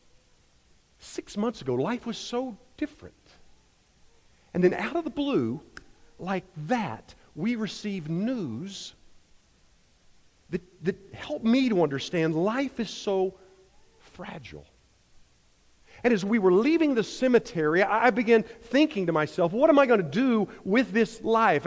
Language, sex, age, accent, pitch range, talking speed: English, male, 50-69, American, 195-255 Hz, 135 wpm